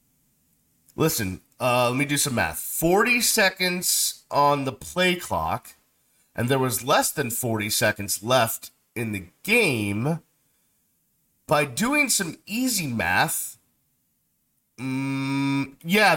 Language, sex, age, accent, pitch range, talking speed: English, male, 40-59, American, 130-190 Hz, 115 wpm